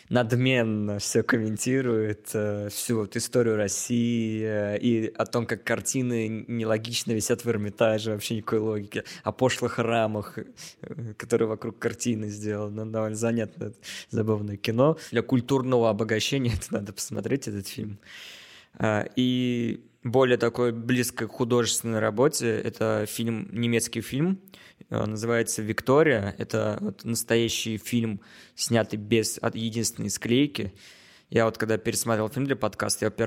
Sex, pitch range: male, 110-120 Hz